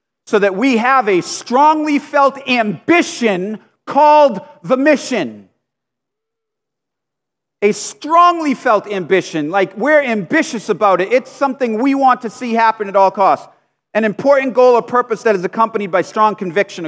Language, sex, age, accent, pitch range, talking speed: English, male, 40-59, American, 185-250 Hz, 145 wpm